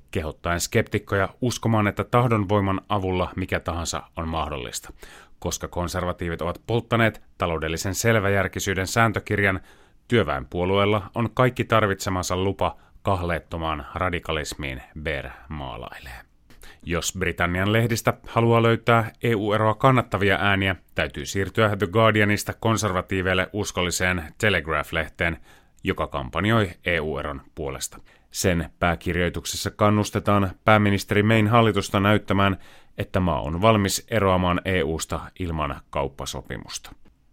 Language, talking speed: Finnish, 95 wpm